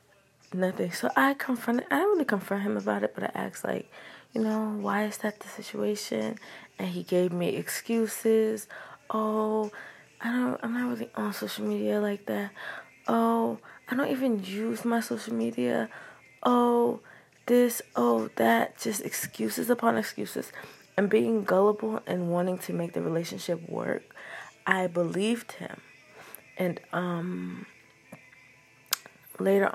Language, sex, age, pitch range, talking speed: English, female, 20-39, 160-215 Hz, 140 wpm